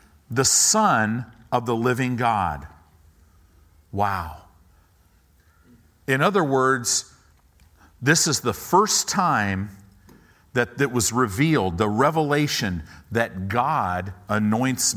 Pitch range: 85-120 Hz